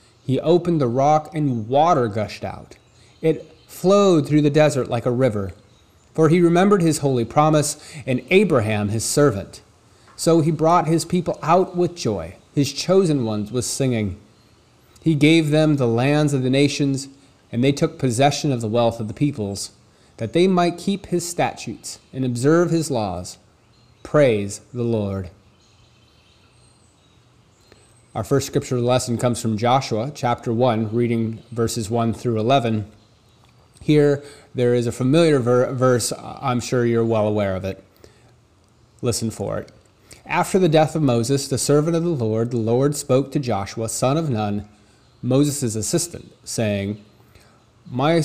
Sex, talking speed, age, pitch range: male, 150 wpm, 30-49, 110-150 Hz